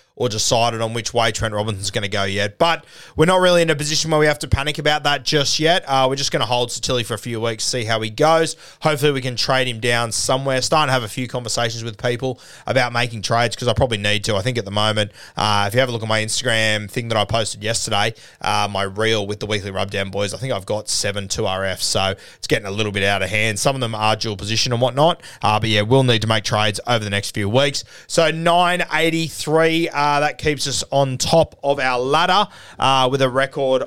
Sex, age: male, 20-39